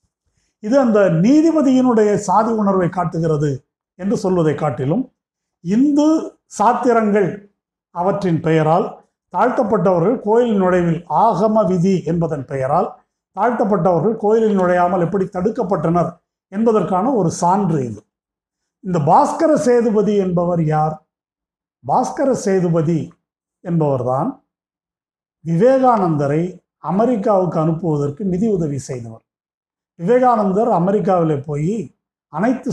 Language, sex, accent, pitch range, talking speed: Tamil, male, native, 165-220 Hz, 85 wpm